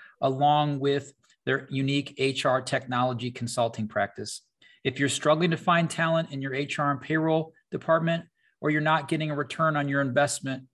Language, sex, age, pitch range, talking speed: English, male, 40-59, 120-155 Hz, 160 wpm